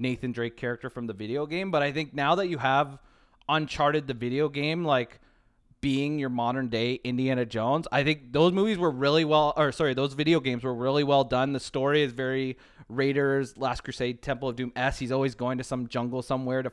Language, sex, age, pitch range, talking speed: English, male, 20-39, 120-145 Hz, 215 wpm